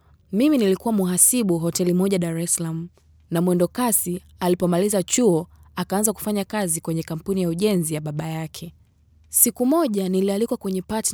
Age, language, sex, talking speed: 20-39, Swahili, female, 145 wpm